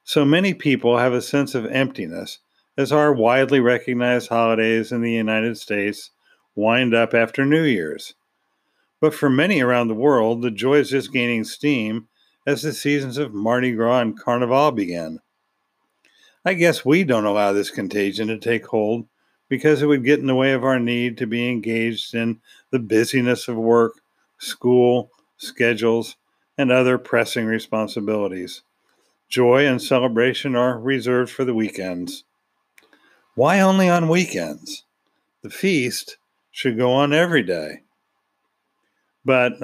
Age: 50-69